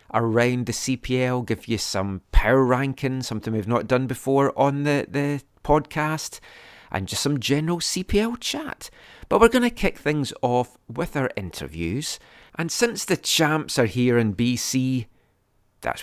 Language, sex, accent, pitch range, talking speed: English, male, British, 110-145 Hz, 155 wpm